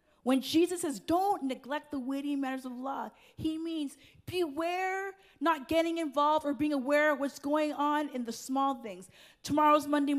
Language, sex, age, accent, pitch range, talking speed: English, female, 30-49, American, 225-305 Hz, 170 wpm